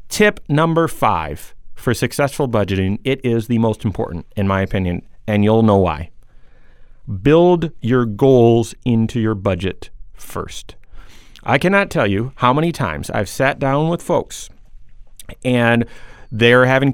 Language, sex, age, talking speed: English, male, 40-59, 140 wpm